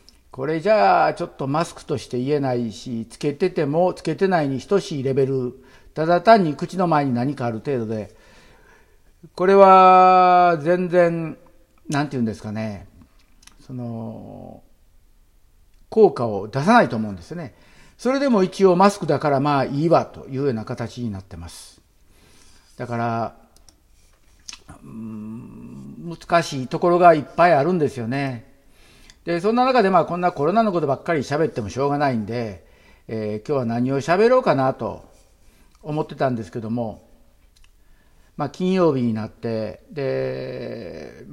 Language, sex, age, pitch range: Japanese, male, 50-69, 115-170 Hz